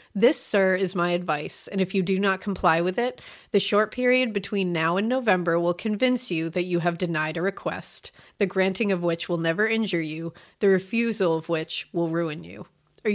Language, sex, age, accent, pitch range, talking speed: English, female, 30-49, American, 170-215 Hz, 205 wpm